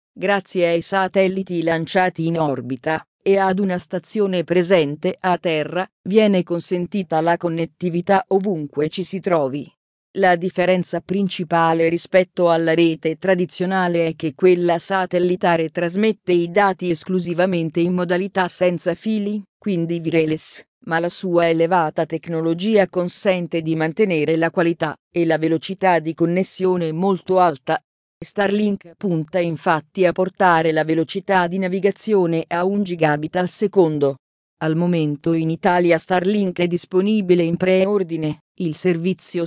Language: Italian